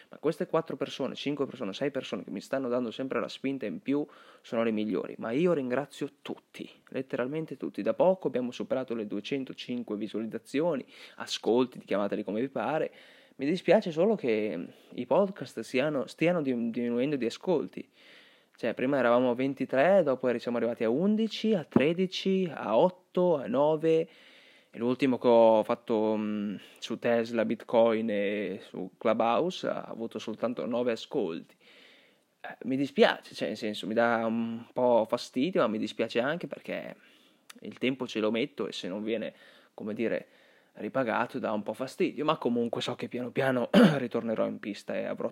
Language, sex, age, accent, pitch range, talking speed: Italian, male, 20-39, native, 115-145 Hz, 160 wpm